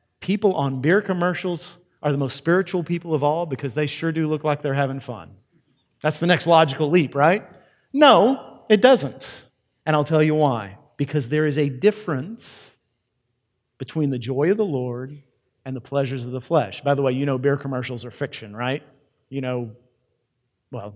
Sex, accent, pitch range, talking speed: male, American, 125-175 Hz, 185 wpm